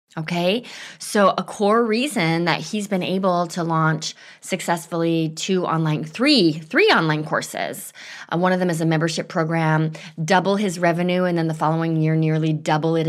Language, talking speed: English, 170 wpm